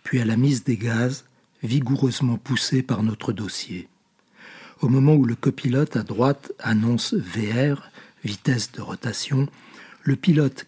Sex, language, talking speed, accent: male, French, 140 wpm, French